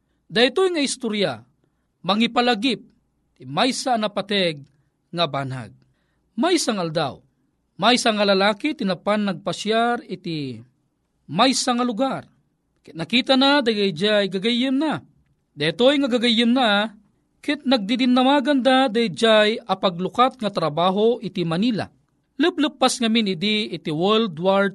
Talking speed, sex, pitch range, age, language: 120 wpm, male, 175-240 Hz, 40-59, Filipino